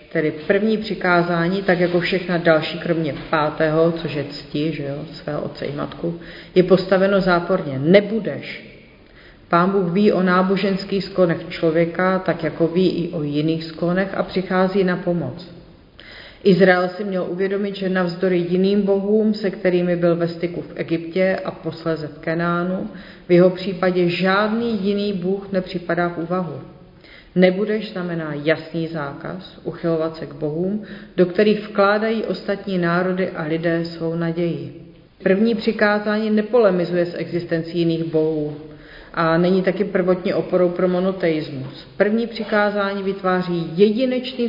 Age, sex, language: 40-59, female, Czech